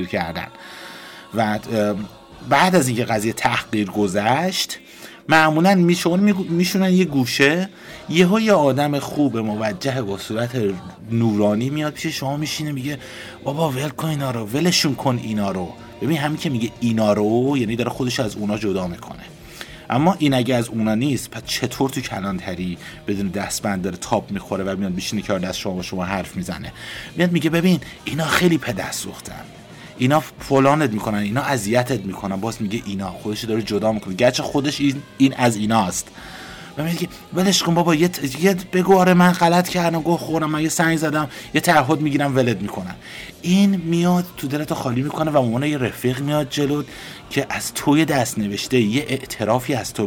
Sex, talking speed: male, 175 wpm